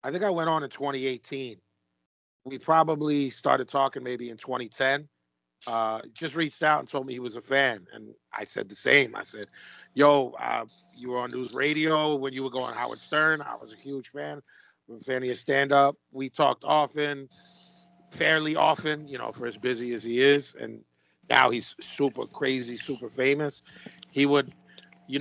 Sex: male